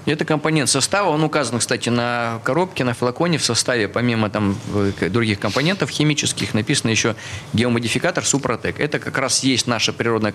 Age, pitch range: 20-39, 115-145 Hz